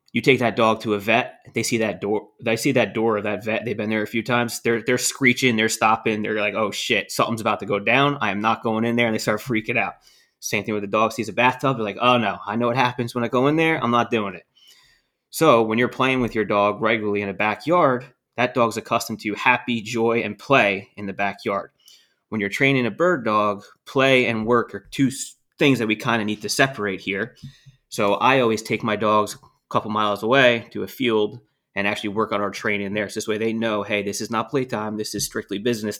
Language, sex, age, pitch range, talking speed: English, male, 20-39, 105-125 Hz, 250 wpm